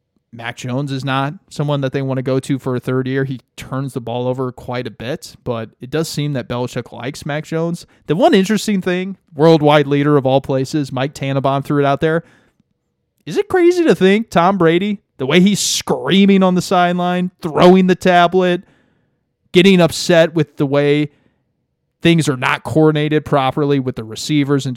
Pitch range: 135-185 Hz